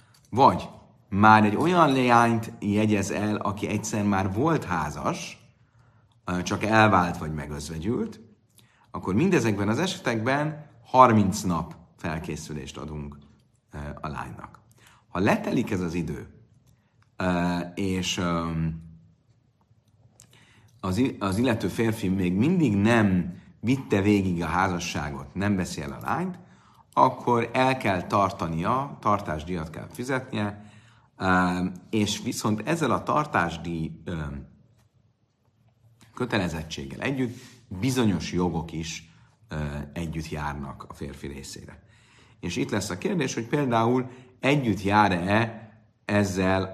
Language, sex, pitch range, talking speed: Hungarian, male, 85-115 Hz, 105 wpm